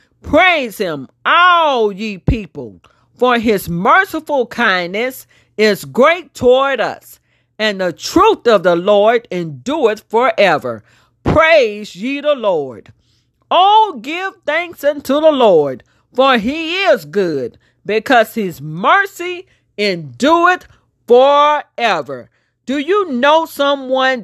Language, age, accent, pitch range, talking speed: English, 40-59, American, 205-315 Hz, 110 wpm